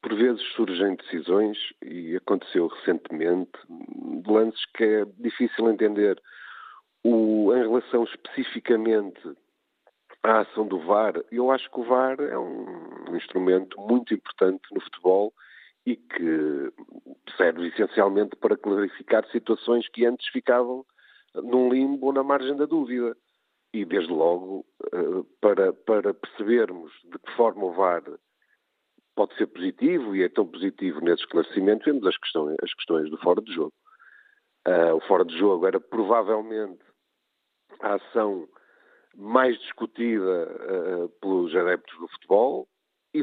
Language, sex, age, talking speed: Portuguese, male, 50-69, 130 wpm